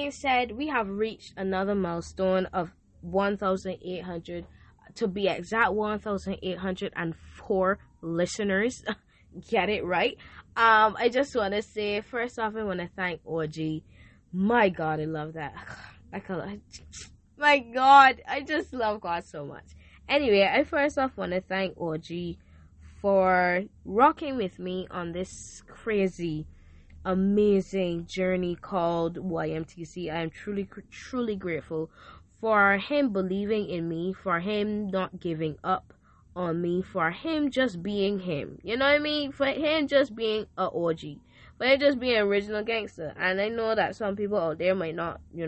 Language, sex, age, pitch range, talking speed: English, female, 10-29, 170-230 Hz, 150 wpm